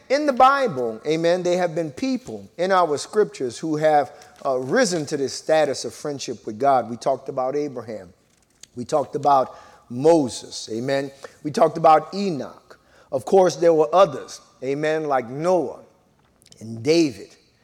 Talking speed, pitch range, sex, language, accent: 155 wpm, 125-180 Hz, male, English, American